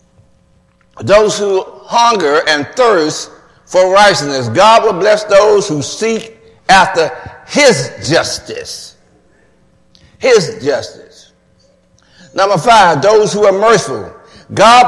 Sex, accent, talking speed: male, American, 100 wpm